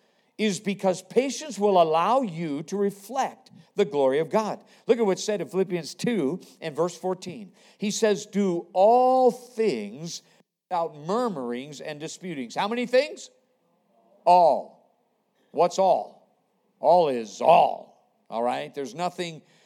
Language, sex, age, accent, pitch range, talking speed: English, male, 50-69, American, 145-215 Hz, 135 wpm